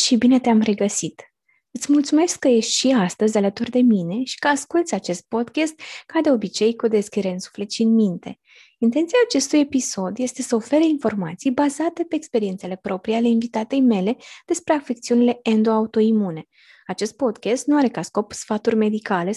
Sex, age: female, 20-39